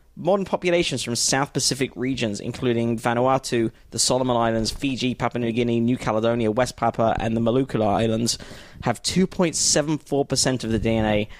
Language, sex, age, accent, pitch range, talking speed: English, male, 20-39, British, 115-145 Hz, 145 wpm